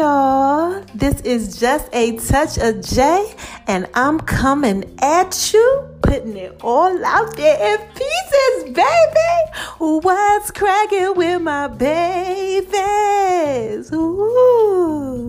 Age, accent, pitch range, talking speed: 30-49, American, 200-320 Hz, 100 wpm